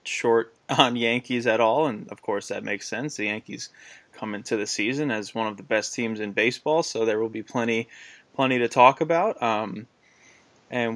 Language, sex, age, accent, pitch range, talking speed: English, male, 20-39, American, 105-120 Hz, 195 wpm